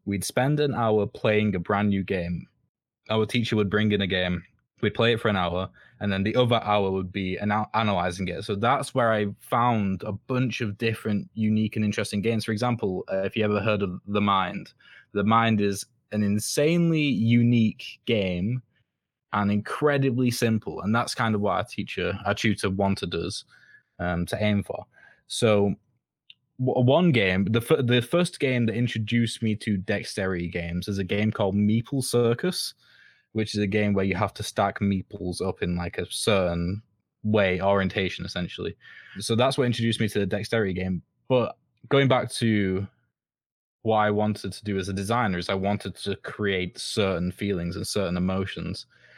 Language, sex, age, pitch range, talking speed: English, male, 20-39, 95-115 Hz, 180 wpm